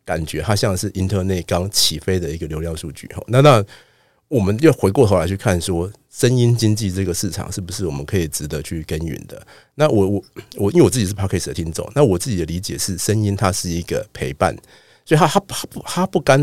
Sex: male